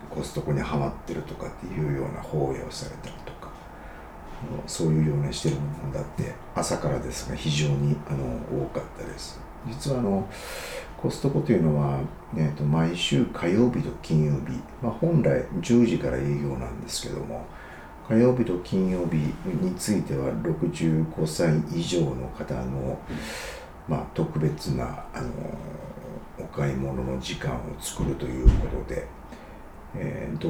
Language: Japanese